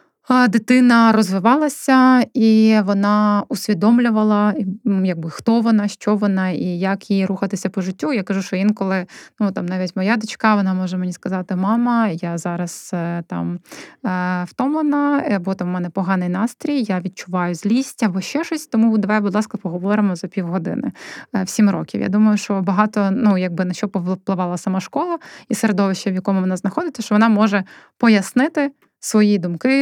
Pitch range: 190-230 Hz